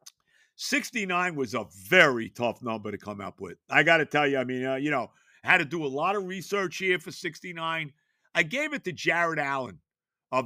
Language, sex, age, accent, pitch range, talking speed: English, male, 50-69, American, 135-180 Hz, 210 wpm